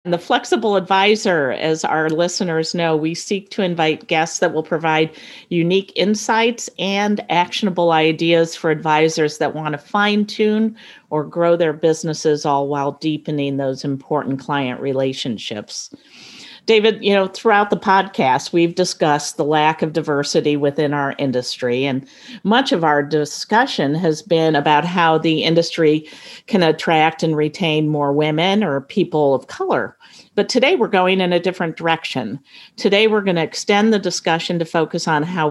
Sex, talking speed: female, 155 wpm